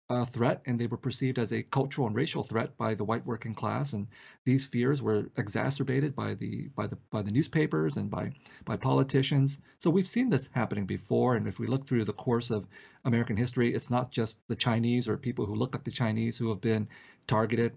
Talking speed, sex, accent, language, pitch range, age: 220 wpm, male, American, English, 115-135 Hz, 40-59